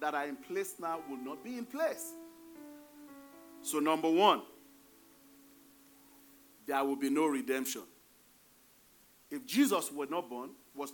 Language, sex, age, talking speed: English, male, 40-59, 115 wpm